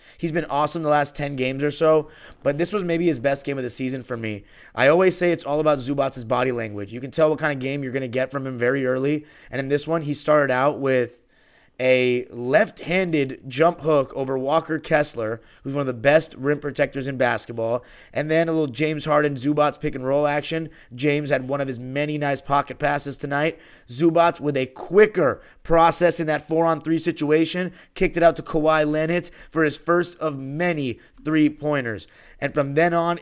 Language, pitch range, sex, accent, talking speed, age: English, 135-160 Hz, male, American, 205 wpm, 30-49